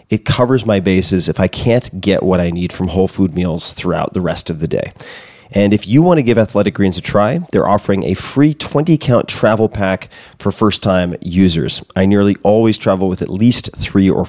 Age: 30-49